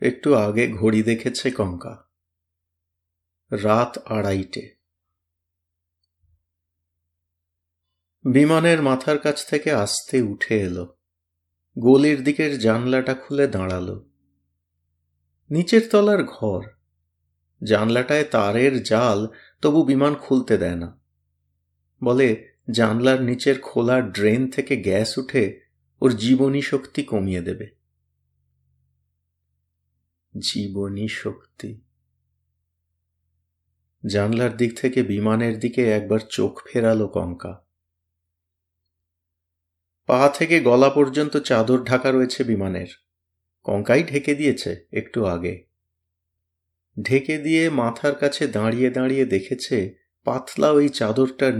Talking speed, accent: 90 wpm, native